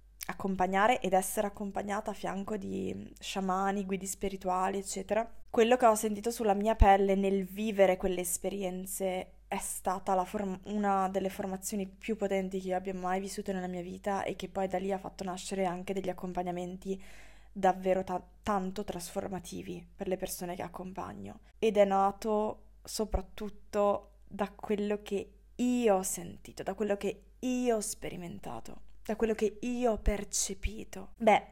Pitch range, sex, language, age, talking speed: 190-210 Hz, female, Italian, 20-39, 155 wpm